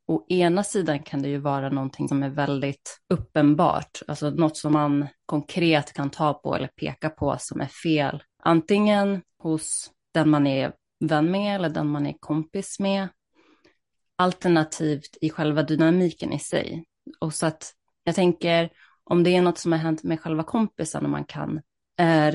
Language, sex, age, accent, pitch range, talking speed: Swedish, female, 30-49, native, 150-180 Hz, 170 wpm